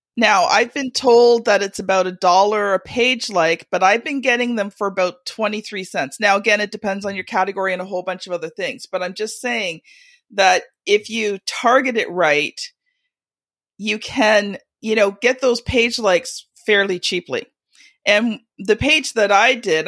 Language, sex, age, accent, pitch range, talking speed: English, female, 40-59, American, 185-235 Hz, 185 wpm